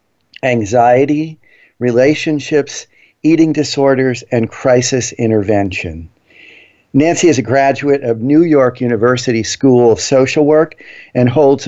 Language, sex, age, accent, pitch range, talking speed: English, male, 50-69, American, 110-145 Hz, 110 wpm